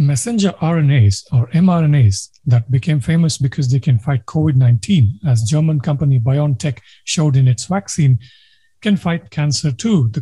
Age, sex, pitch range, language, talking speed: 50-69, male, 130-175 Hz, English, 145 wpm